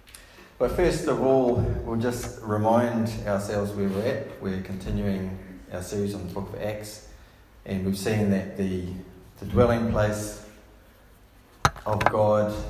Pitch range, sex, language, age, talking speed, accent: 90-105 Hz, male, English, 30-49, 140 wpm, Australian